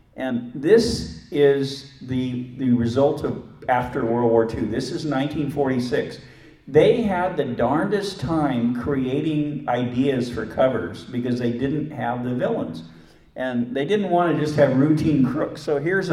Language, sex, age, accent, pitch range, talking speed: English, male, 50-69, American, 115-140 Hz, 150 wpm